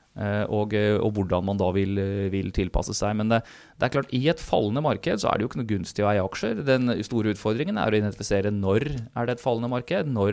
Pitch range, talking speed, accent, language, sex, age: 95-115 Hz, 245 wpm, Swedish, English, male, 20-39